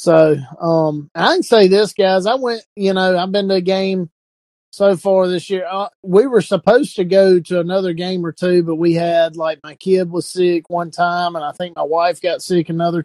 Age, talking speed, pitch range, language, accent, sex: 30-49, 220 wpm, 160-185 Hz, English, American, male